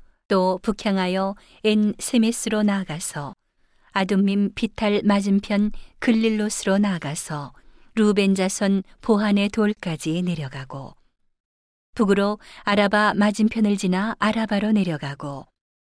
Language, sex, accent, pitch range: Korean, female, native, 175-210 Hz